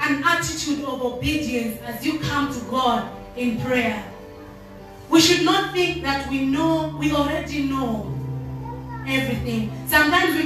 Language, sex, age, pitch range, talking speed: English, female, 30-49, 250-335 Hz, 140 wpm